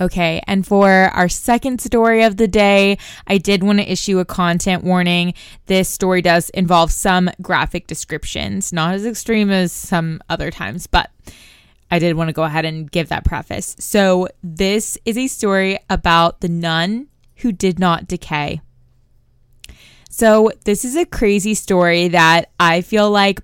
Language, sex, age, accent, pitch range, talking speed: English, female, 20-39, American, 175-220 Hz, 165 wpm